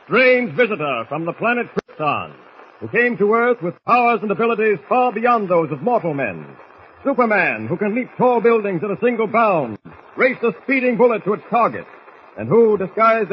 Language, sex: English, male